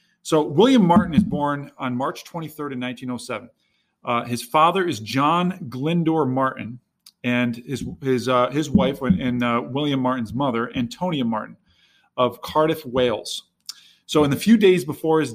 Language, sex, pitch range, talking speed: English, male, 125-150 Hz, 160 wpm